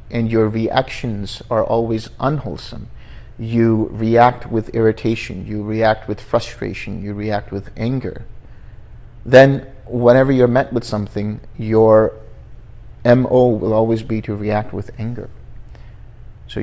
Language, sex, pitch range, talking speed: English, male, 105-120 Hz, 125 wpm